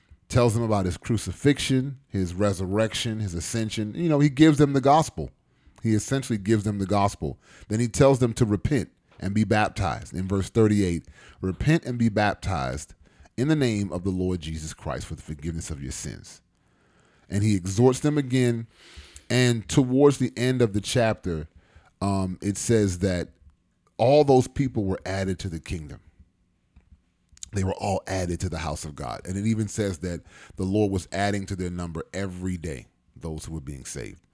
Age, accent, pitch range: 30-49, American, 85-120 Hz